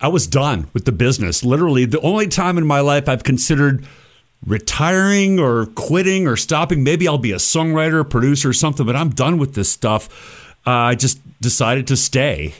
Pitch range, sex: 120-155 Hz, male